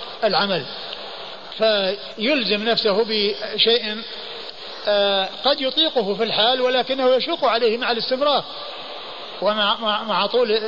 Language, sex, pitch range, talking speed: Arabic, male, 195-230 Hz, 85 wpm